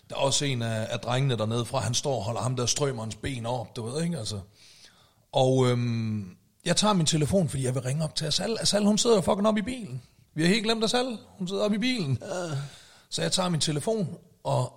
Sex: male